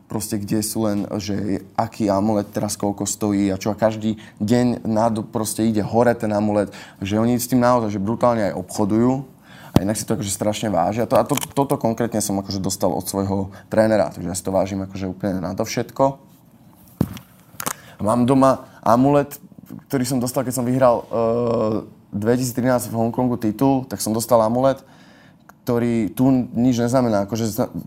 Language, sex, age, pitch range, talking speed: Czech, male, 20-39, 100-125 Hz, 170 wpm